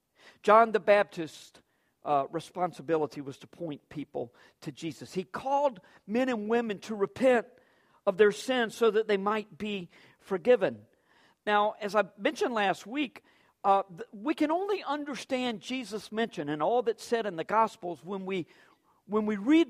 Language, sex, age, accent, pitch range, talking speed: English, male, 50-69, American, 185-260 Hz, 160 wpm